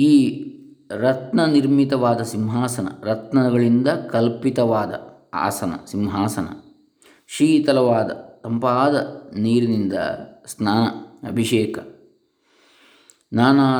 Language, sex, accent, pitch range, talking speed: English, male, Indian, 110-140 Hz, 55 wpm